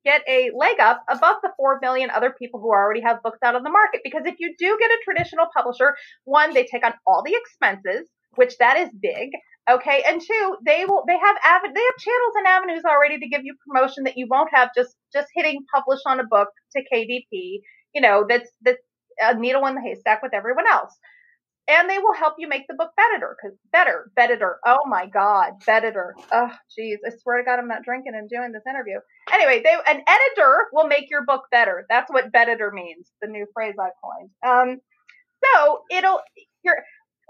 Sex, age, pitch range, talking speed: female, 30-49, 240-360 Hz, 210 wpm